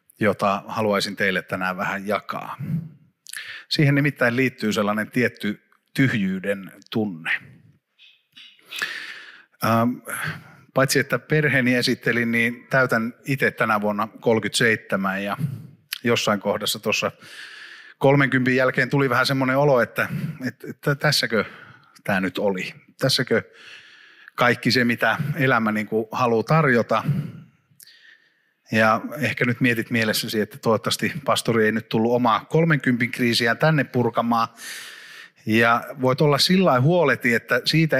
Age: 30-49